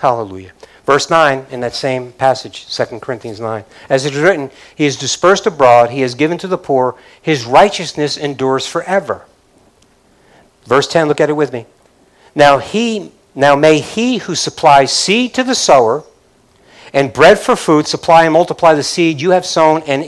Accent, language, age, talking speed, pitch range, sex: American, English, 50-69, 175 wpm, 145-195 Hz, male